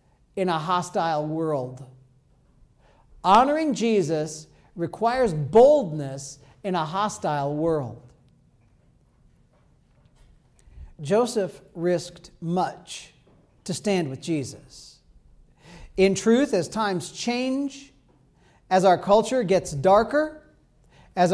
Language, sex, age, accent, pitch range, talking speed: English, male, 50-69, American, 170-280 Hz, 85 wpm